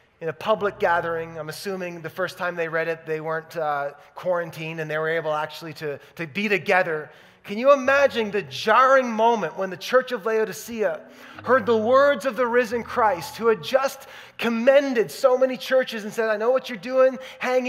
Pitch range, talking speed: 165-240 Hz, 195 wpm